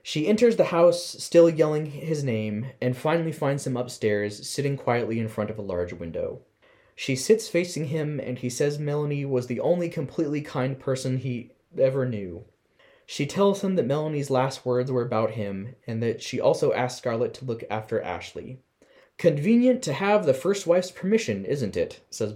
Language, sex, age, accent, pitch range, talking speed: English, male, 20-39, American, 125-195 Hz, 185 wpm